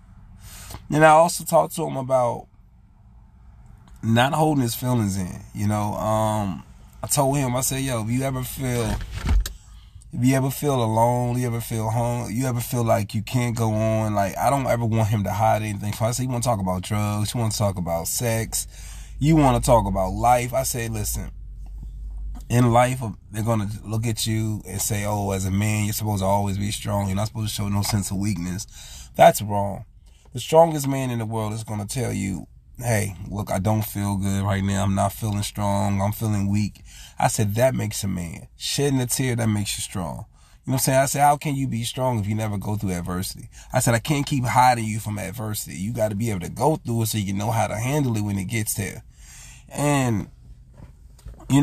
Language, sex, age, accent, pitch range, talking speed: English, male, 20-39, American, 100-120 Hz, 220 wpm